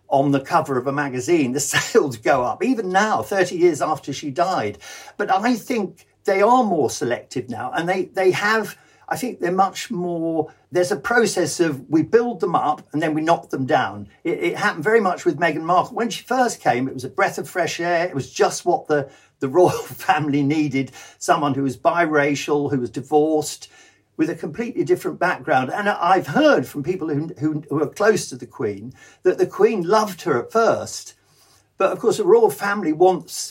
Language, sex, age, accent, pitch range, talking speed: English, male, 50-69, British, 145-205 Hz, 205 wpm